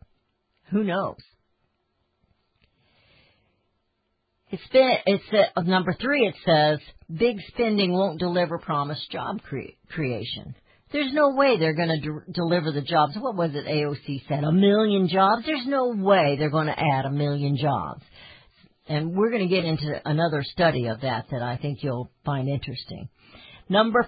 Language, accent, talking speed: English, American, 155 wpm